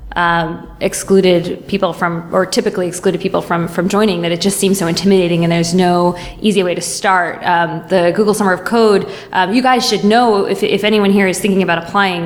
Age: 20-39